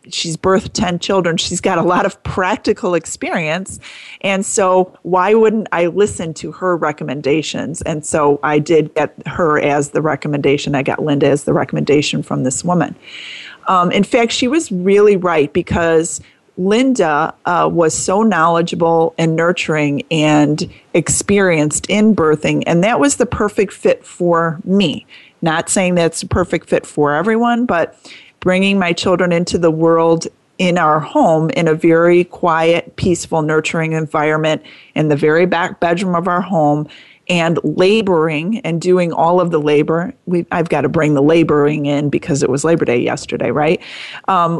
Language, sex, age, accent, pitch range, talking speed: English, female, 30-49, American, 155-185 Hz, 165 wpm